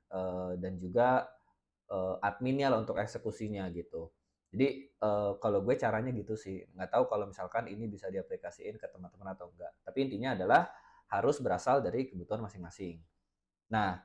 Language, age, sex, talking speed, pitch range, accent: Indonesian, 20-39, male, 155 wpm, 95-120 Hz, native